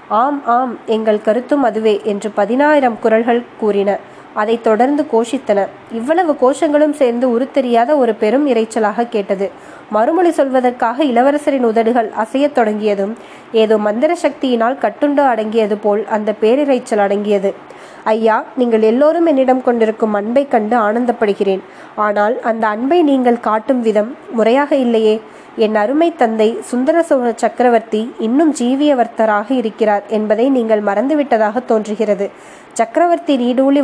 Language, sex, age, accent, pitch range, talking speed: Tamil, female, 20-39, native, 215-270 Hz, 115 wpm